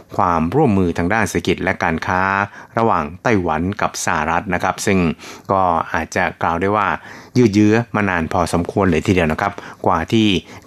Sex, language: male, Thai